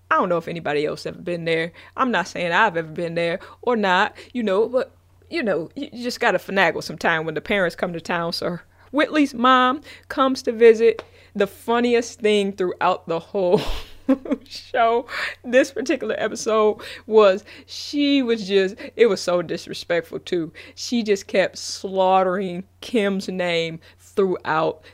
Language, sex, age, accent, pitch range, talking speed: English, female, 20-39, American, 180-275 Hz, 165 wpm